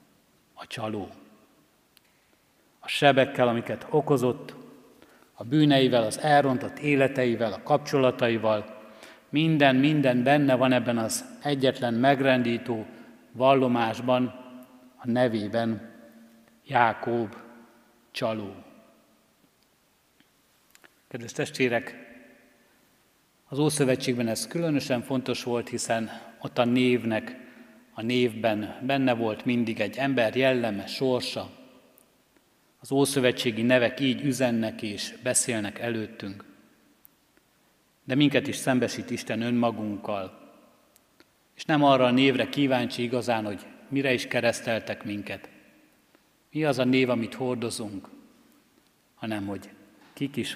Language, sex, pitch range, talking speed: Hungarian, male, 115-130 Hz, 100 wpm